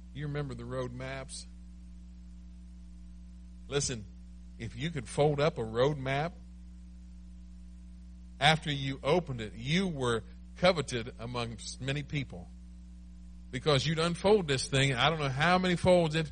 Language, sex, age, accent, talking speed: English, male, 50-69, American, 135 wpm